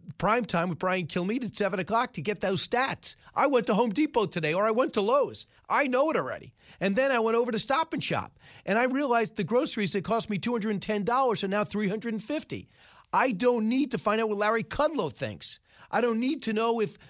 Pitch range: 145-215 Hz